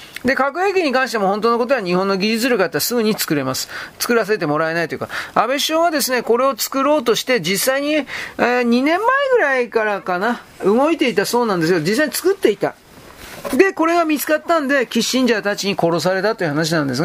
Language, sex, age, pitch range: Japanese, male, 40-59, 185-270 Hz